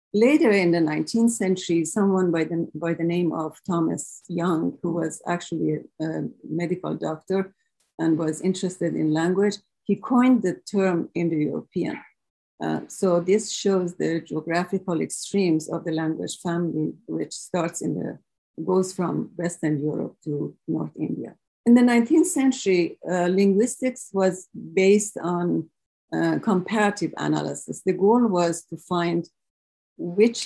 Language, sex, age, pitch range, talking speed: English, female, 50-69, 160-190 Hz, 135 wpm